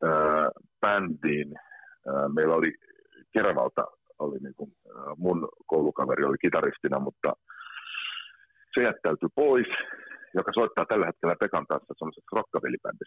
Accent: native